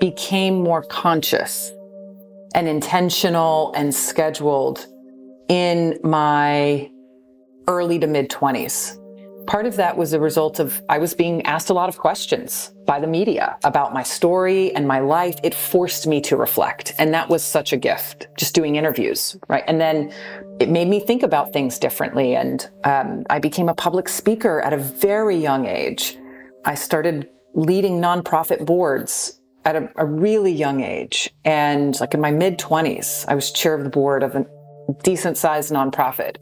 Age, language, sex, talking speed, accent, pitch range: 30-49, English, female, 165 wpm, American, 140-175 Hz